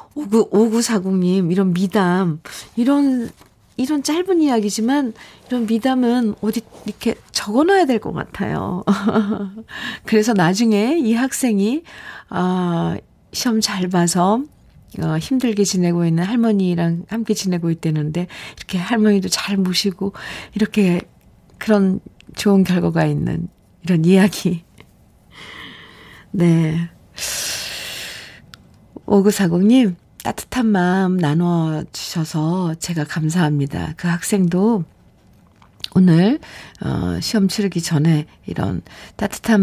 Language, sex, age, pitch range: Korean, female, 40-59, 170-225 Hz